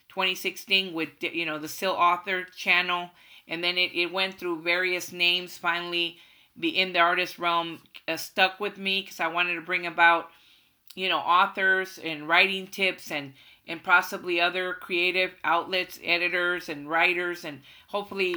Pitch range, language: 165-185 Hz, English